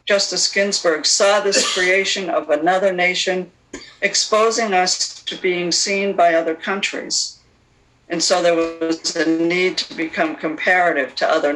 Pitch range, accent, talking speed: 155-195 Hz, American, 140 wpm